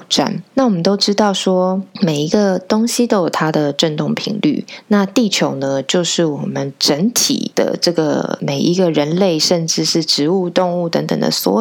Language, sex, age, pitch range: Chinese, female, 20-39, 165-205 Hz